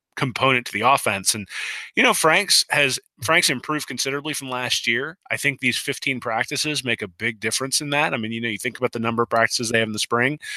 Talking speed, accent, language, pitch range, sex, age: 240 wpm, American, English, 110-130 Hz, male, 20-39